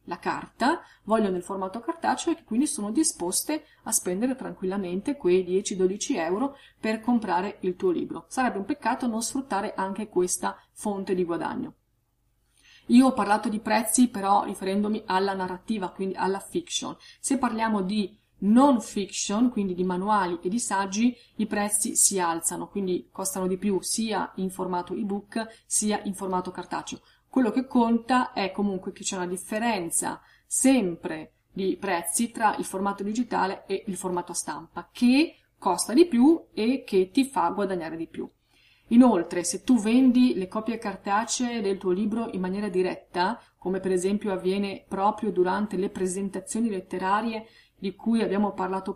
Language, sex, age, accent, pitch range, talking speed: Italian, female, 30-49, native, 185-235 Hz, 155 wpm